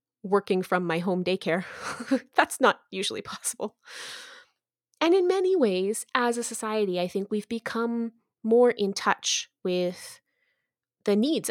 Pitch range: 185-260 Hz